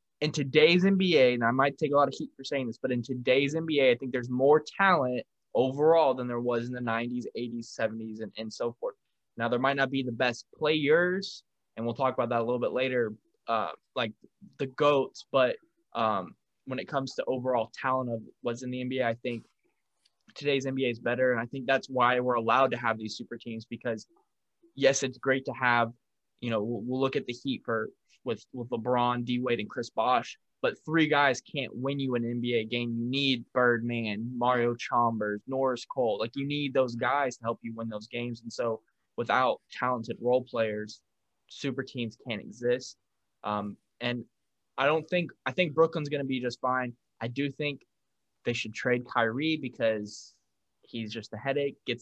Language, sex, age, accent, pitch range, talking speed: English, male, 20-39, American, 115-135 Hz, 200 wpm